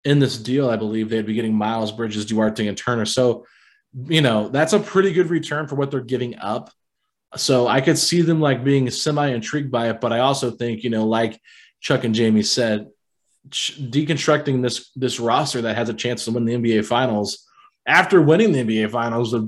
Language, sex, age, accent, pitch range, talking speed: English, male, 20-39, American, 110-130 Hz, 205 wpm